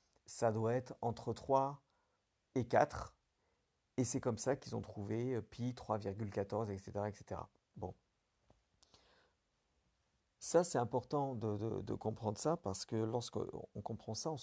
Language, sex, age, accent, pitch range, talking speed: French, male, 50-69, French, 105-125 Hz, 130 wpm